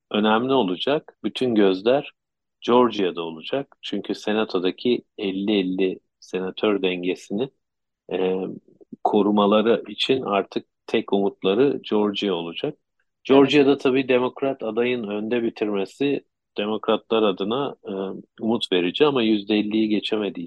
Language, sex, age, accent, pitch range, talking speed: Turkish, male, 50-69, native, 95-120 Hz, 95 wpm